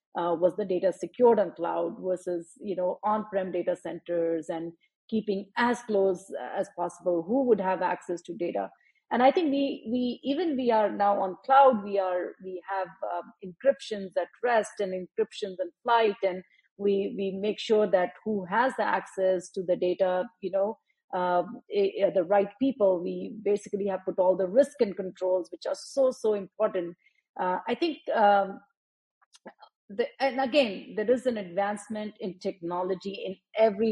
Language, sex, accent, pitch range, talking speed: English, female, Indian, 185-225 Hz, 175 wpm